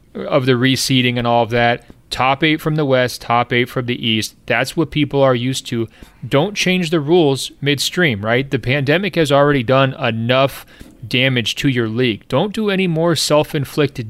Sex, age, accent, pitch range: male, 30-49, American, 125-150 Hz